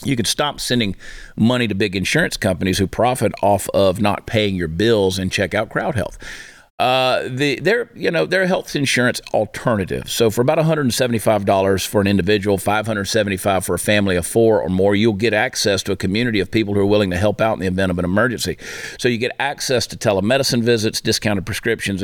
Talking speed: 225 wpm